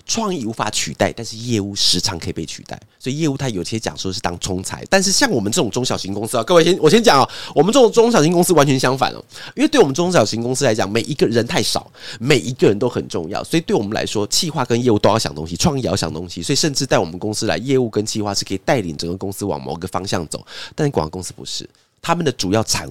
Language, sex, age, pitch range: Chinese, male, 30-49, 95-150 Hz